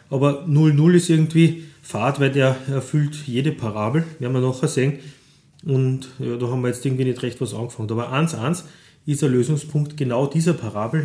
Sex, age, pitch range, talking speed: male, 30-49, 120-145 Hz, 180 wpm